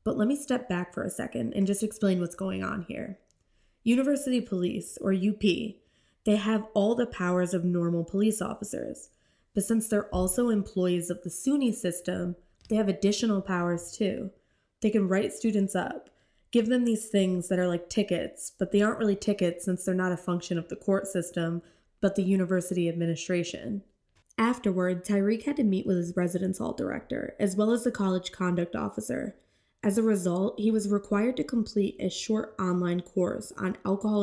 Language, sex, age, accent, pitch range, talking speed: English, female, 20-39, American, 180-220 Hz, 180 wpm